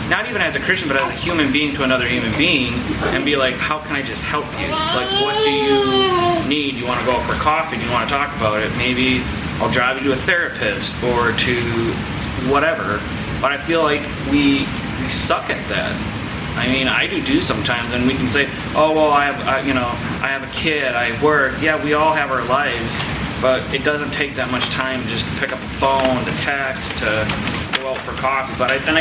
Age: 30-49